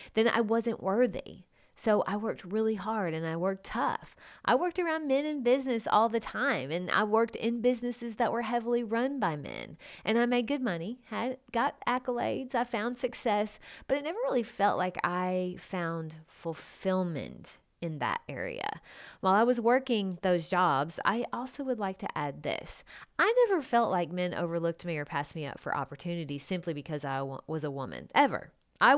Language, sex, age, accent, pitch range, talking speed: English, female, 30-49, American, 170-235 Hz, 185 wpm